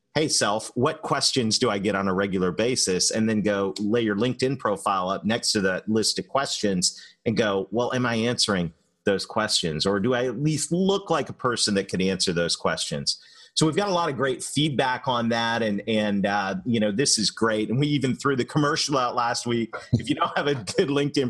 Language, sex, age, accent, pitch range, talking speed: English, male, 30-49, American, 100-135 Hz, 230 wpm